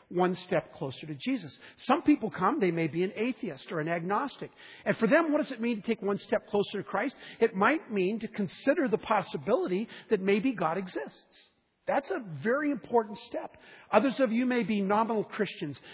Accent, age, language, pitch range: American, 50-69, English, 185-235 Hz